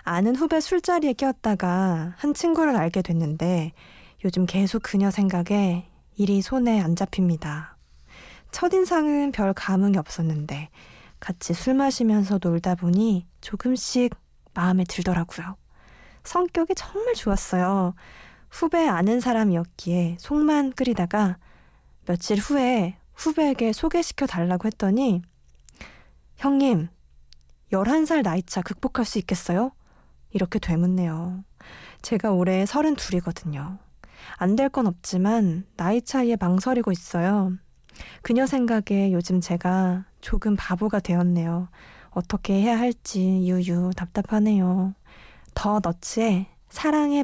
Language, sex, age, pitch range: Korean, female, 20-39, 175-235 Hz